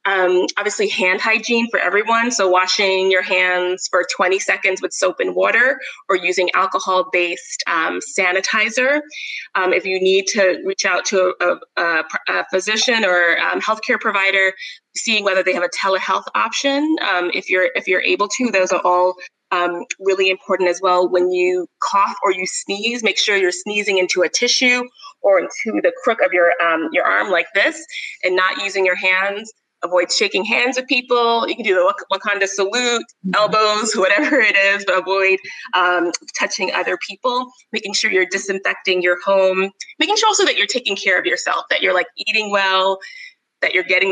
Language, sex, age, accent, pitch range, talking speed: English, female, 20-39, American, 185-220 Hz, 180 wpm